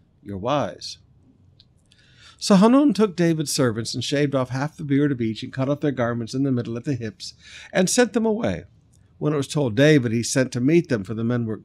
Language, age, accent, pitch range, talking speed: English, 50-69, American, 115-150 Hz, 225 wpm